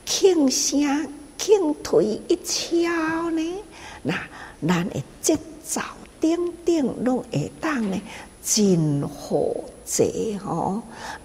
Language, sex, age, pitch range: Chinese, female, 60-79, 190-300 Hz